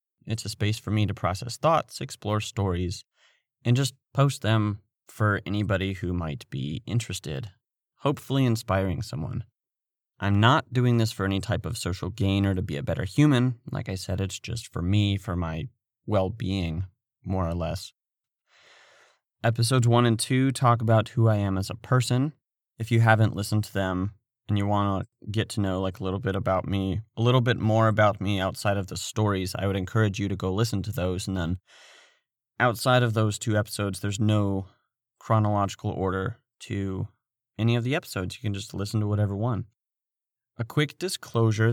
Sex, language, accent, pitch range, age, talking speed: male, English, American, 100-120 Hz, 30-49, 185 wpm